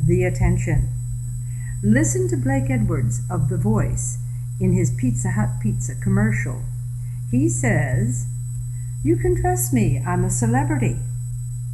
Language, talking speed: English, 125 wpm